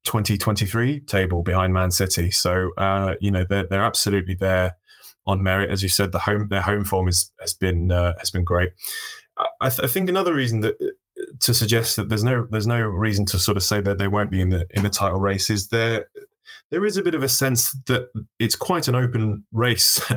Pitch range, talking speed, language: 95-115 Hz, 215 wpm, English